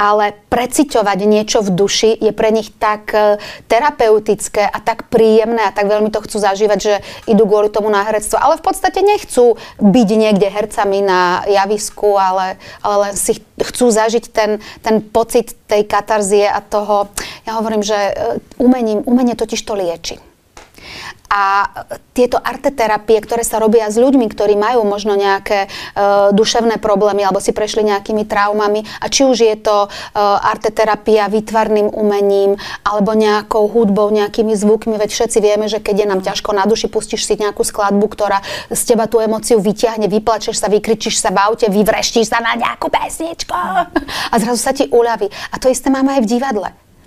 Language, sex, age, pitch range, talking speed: Slovak, female, 30-49, 210-235 Hz, 165 wpm